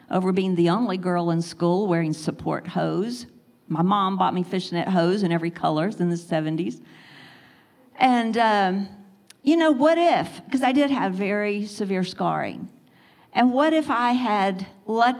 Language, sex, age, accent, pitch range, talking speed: English, female, 50-69, American, 170-225 Hz, 160 wpm